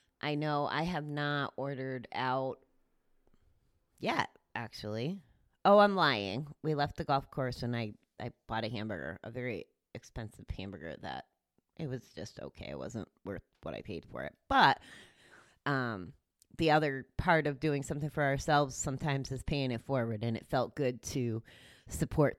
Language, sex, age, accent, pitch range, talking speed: English, female, 30-49, American, 120-150 Hz, 165 wpm